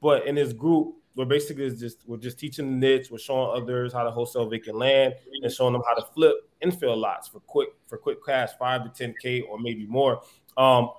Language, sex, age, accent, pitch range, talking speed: English, male, 20-39, American, 120-145 Hz, 220 wpm